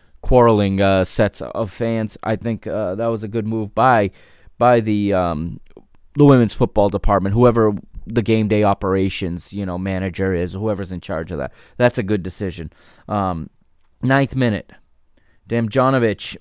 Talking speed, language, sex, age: 155 wpm, English, male, 20-39